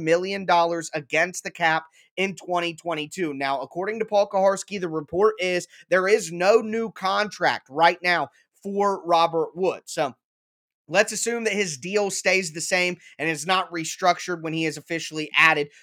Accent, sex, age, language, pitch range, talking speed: American, male, 20-39, English, 155-185 Hz, 165 wpm